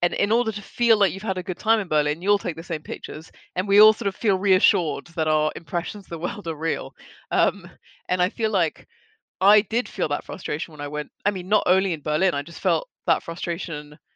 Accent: British